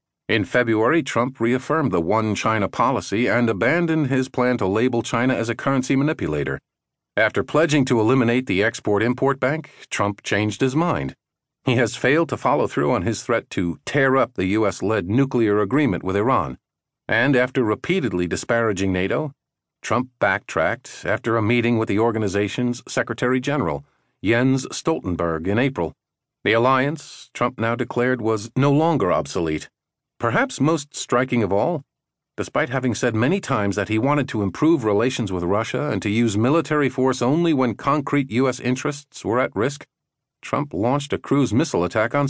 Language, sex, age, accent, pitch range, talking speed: English, male, 50-69, American, 105-130 Hz, 160 wpm